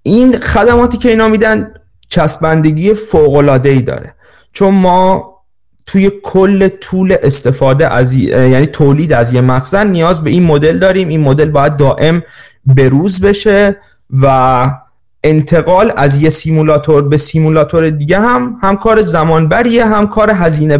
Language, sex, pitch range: Persian, male, 130-185 Hz